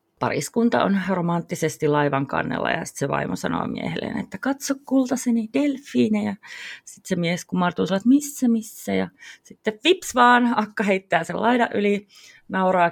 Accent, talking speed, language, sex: native, 155 wpm, Finnish, female